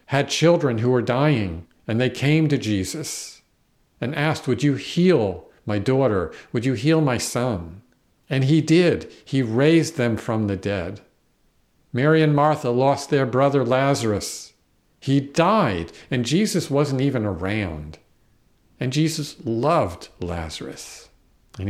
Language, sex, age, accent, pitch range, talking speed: English, male, 50-69, American, 105-145 Hz, 140 wpm